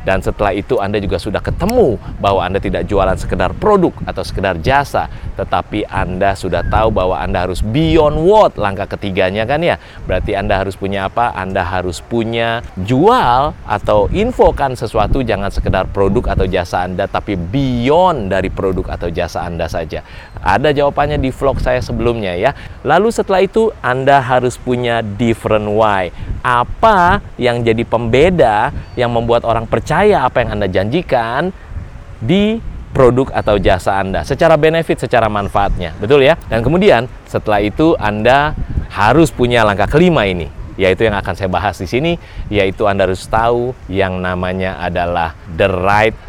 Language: Indonesian